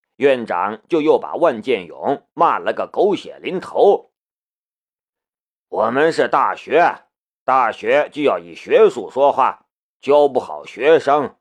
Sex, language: male, Chinese